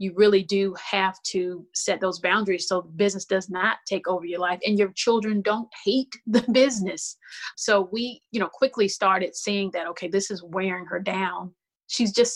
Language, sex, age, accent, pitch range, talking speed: English, female, 30-49, American, 185-210 Hz, 190 wpm